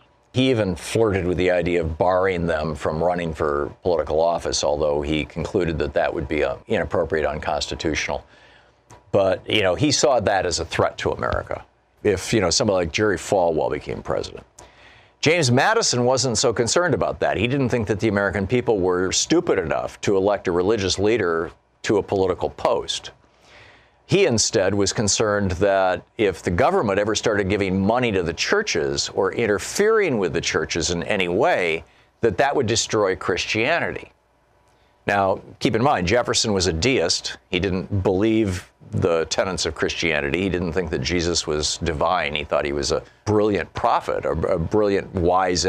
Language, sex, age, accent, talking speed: English, male, 50-69, American, 170 wpm